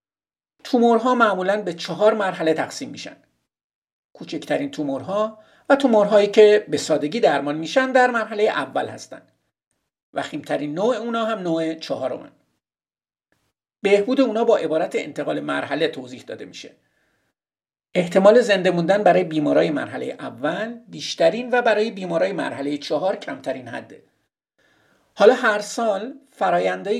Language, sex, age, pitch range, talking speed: Persian, male, 50-69, 165-235 Hz, 120 wpm